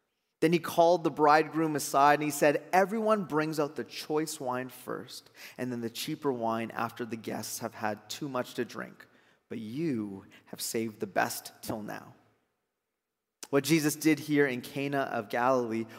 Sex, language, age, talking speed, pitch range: male, English, 30-49, 175 wpm, 130-175 Hz